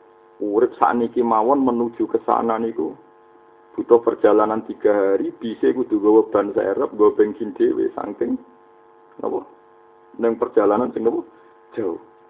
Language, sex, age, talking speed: Indonesian, male, 50-69, 120 wpm